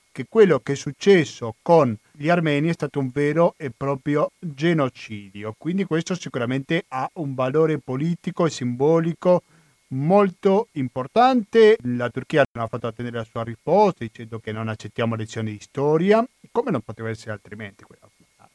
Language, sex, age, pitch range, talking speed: Italian, male, 40-59, 125-185 Hz, 155 wpm